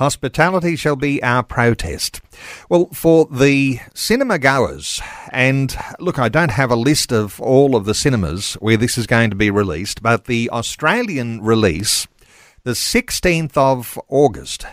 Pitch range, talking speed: 115-150 Hz, 150 wpm